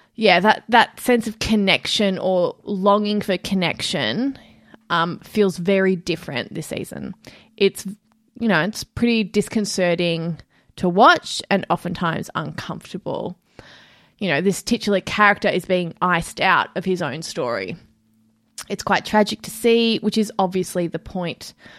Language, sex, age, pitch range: English, female, 20-39, 180-220 Hz